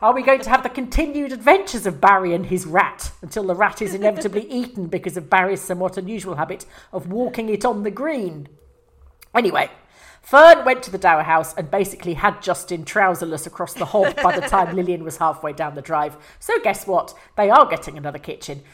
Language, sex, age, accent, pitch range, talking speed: English, female, 40-59, British, 160-210 Hz, 200 wpm